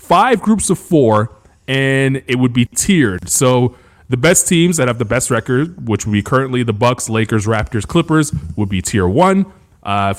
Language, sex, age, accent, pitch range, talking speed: English, male, 20-39, American, 115-150 Hz, 190 wpm